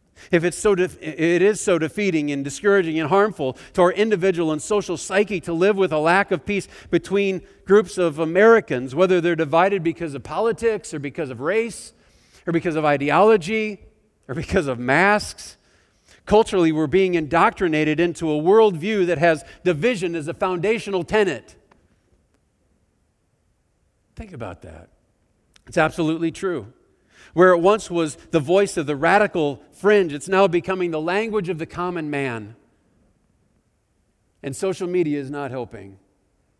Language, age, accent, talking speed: English, 50-69, American, 150 wpm